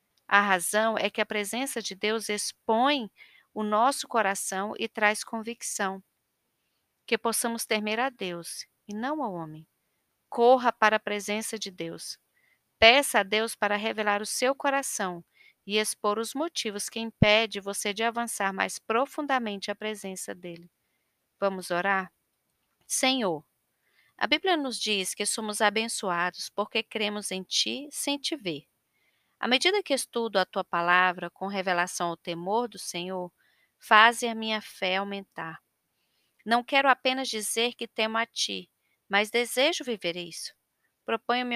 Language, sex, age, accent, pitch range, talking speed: Portuguese, female, 40-59, Brazilian, 195-235 Hz, 145 wpm